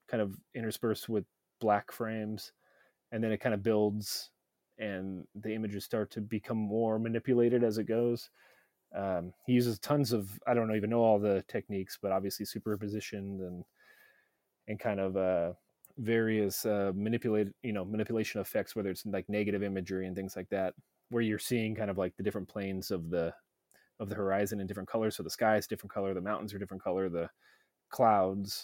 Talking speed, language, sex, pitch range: 185 wpm, English, male, 100-115 Hz